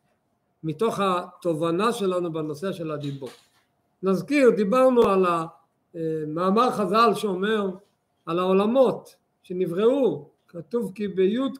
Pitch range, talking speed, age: 165-230 Hz, 95 wpm, 50-69